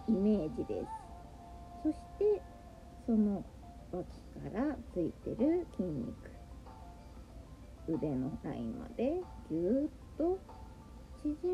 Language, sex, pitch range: Japanese, female, 220-360 Hz